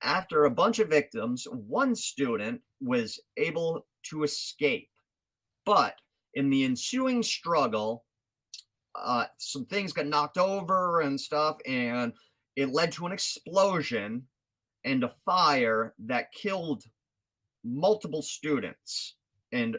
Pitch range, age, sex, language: 115-160 Hz, 30-49, male, English